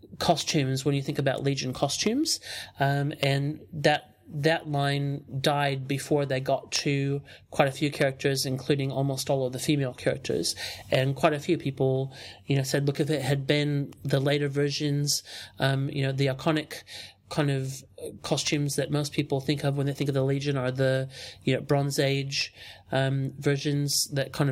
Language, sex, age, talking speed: English, male, 30-49, 180 wpm